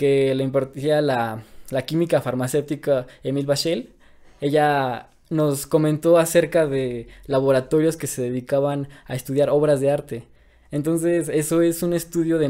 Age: 20-39